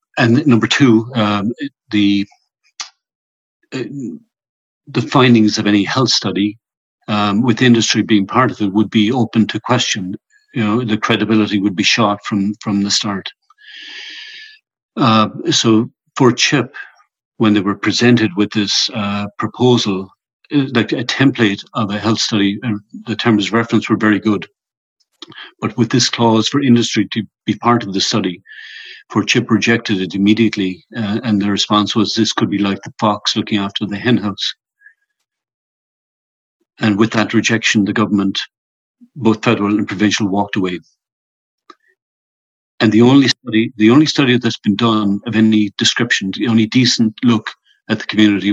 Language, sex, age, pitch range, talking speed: English, male, 50-69, 105-120 Hz, 155 wpm